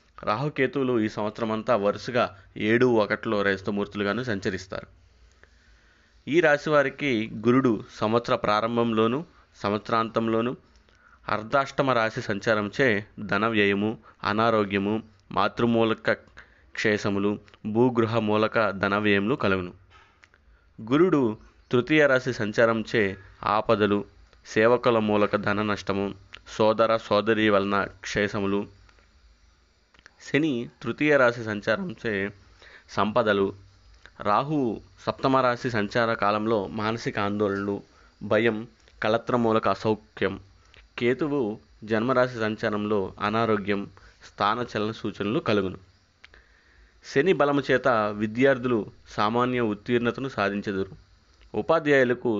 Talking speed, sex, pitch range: 80 wpm, male, 100-120 Hz